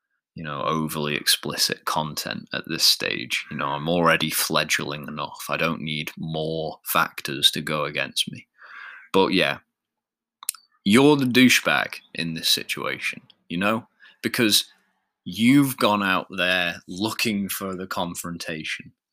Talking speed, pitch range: 130 wpm, 85-110 Hz